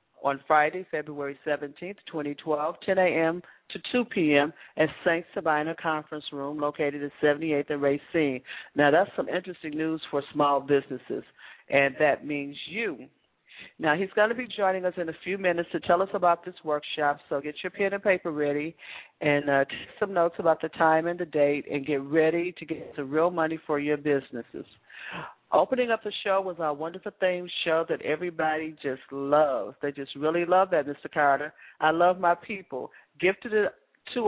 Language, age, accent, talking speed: English, 50-69, American, 185 wpm